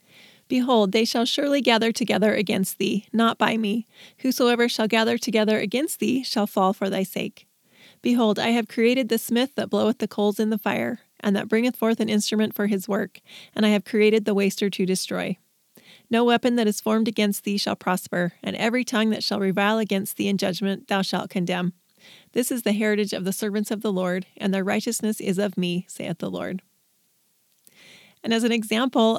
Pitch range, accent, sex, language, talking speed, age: 200-235 Hz, American, female, English, 200 wpm, 30-49